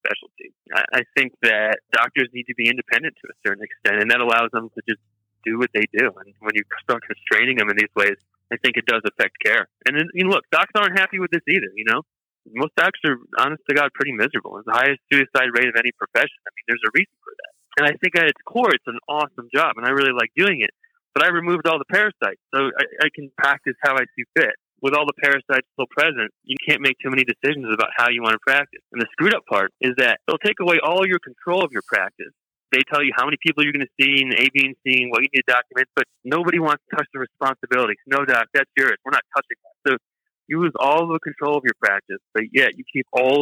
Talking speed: 260 wpm